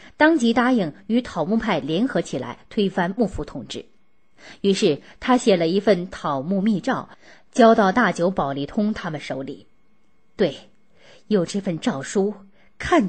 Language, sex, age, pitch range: Chinese, female, 30-49, 180-255 Hz